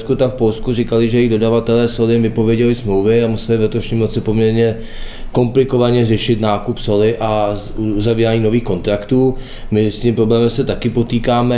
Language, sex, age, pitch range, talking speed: Czech, male, 20-39, 105-115 Hz, 155 wpm